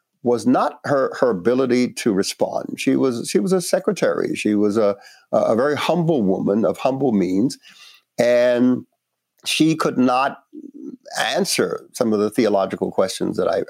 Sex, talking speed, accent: male, 155 wpm, American